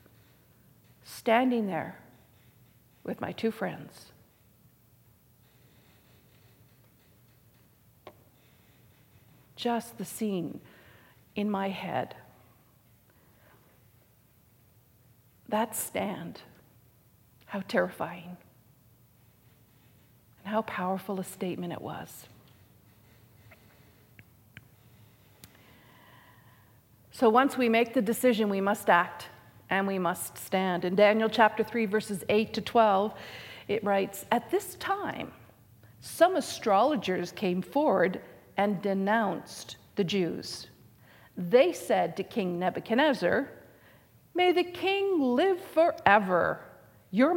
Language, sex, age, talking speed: English, female, 50-69, 85 wpm